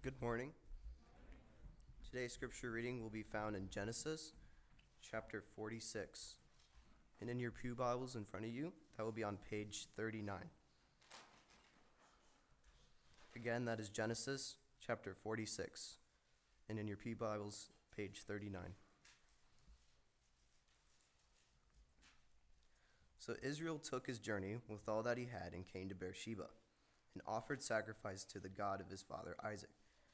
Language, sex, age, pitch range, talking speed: English, male, 20-39, 100-115 Hz, 125 wpm